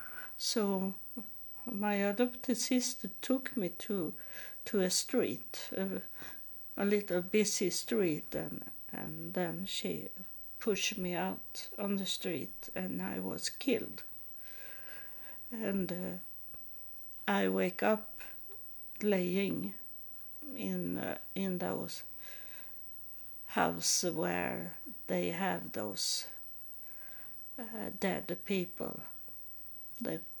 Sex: female